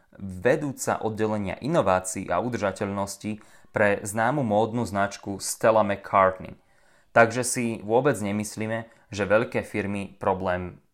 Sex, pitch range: male, 100-125 Hz